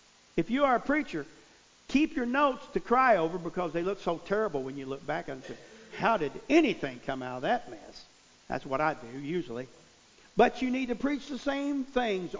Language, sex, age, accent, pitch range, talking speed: English, male, 50-69, American, 155-220 Hz, 210 wpm